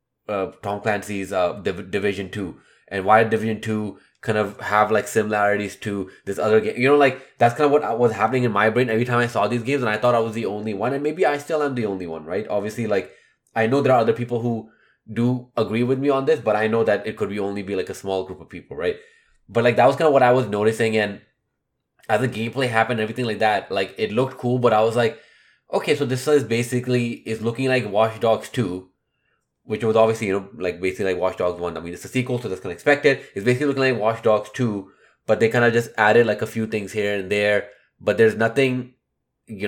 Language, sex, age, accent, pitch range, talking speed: English, male, 20-39, Indian, 100-120 Hz, 255 wpm